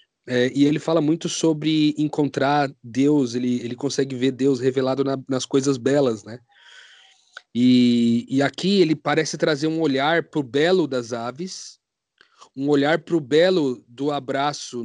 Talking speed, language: 160 wpm, Portuguese